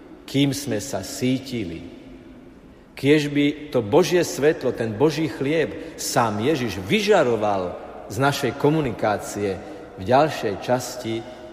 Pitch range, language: 105-150 Hz, Slovak